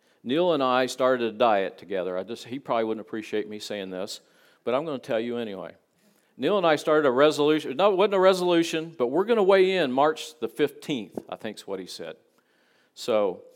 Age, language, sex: 50-69, English, male